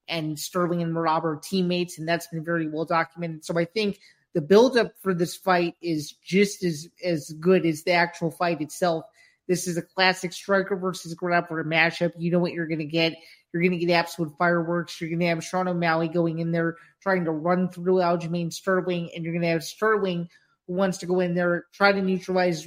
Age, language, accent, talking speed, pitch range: 30-49, English, American, 215 wpm, 165-180 Hz